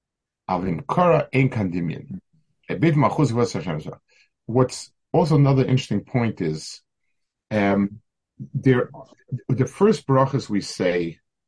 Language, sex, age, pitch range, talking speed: English, male, 50-69, 105-140 Hz, 70 wpm